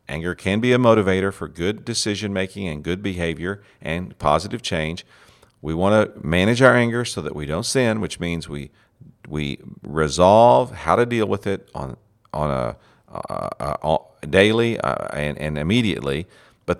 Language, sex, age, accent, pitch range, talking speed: English, male, 50-69, American, 85-110 Hz, 170 wpm